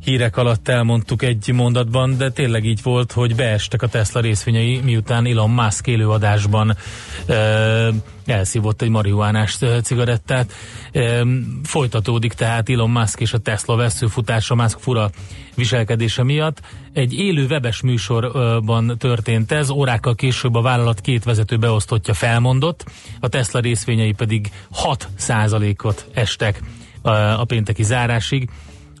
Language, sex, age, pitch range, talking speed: Hungarian, male, 30-49, 110-130 Hz, 120 wpm